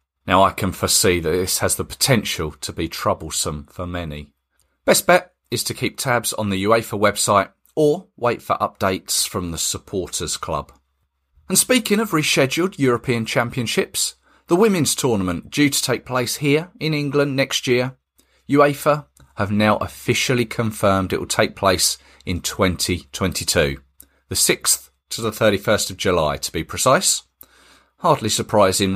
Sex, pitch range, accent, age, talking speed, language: male, 85-135 Hz, British, 40-59, 150 wpm, English